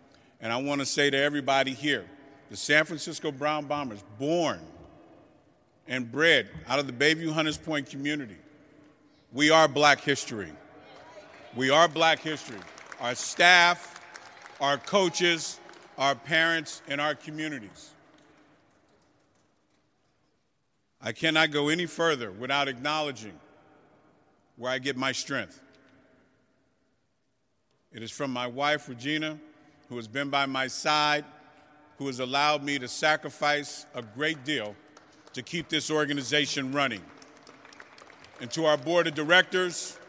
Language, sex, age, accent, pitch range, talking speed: English, male, 50-69, American, 140-160 Hz, 125 wpm